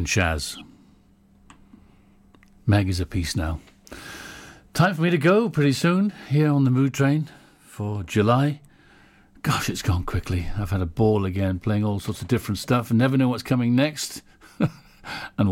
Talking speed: 160 wpm